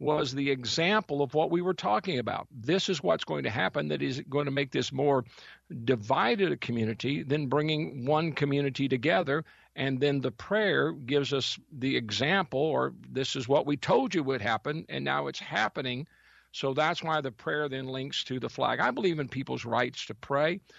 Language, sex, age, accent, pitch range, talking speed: English, male, 50-69, American, 130-170 Hz, 195 wpm